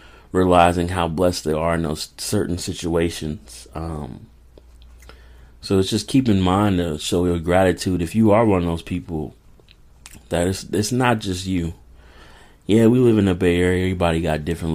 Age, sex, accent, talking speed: 30-49, male, American, 175 wpm